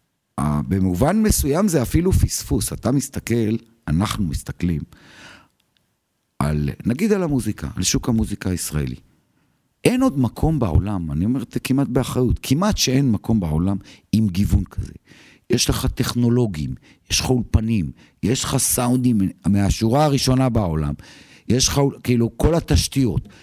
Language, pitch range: Hebrew, 100-140 Hz